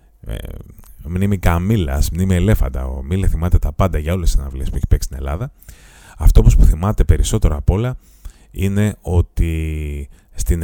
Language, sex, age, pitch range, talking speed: Greek, male, 30-49, 80-95 Hz, 165 wpm